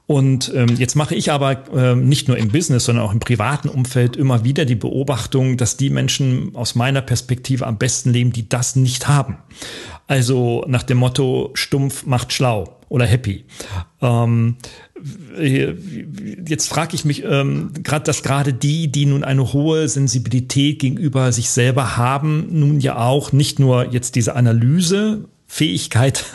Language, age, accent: German, 40-59, German